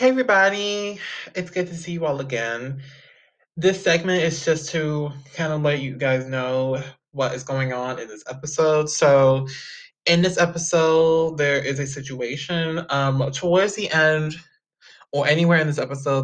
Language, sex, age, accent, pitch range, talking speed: English, male, 20-39, American, 130-165 Hz, 165 wpm